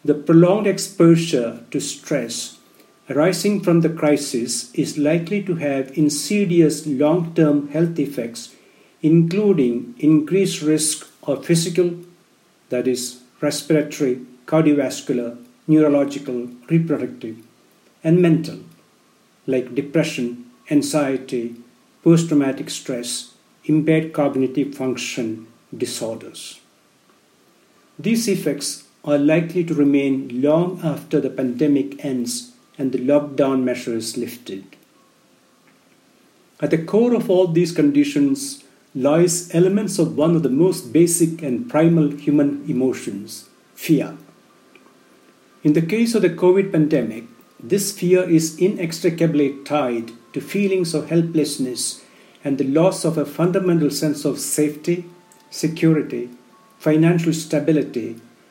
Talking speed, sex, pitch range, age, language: 105 wpm, male, 135-170 Hz, 60-79, English